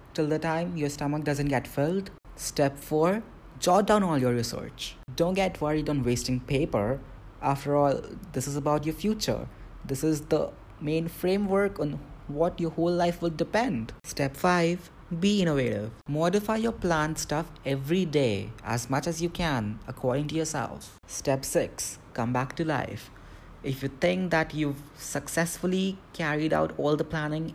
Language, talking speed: English, 165 wpm